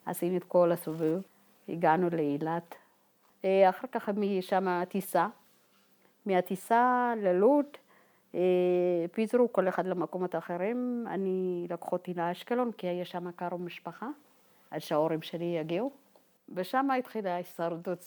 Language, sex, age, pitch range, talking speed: English, female, 50-69, 175-220 Hz, 85 wpm